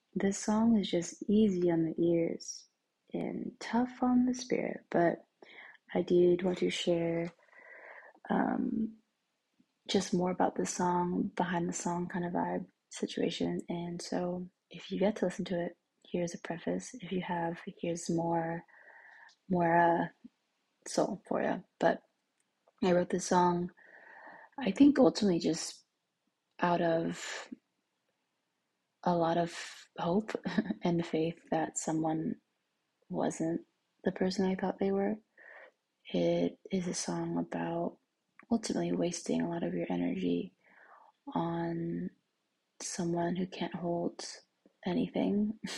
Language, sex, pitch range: English, female, 170-210 Hz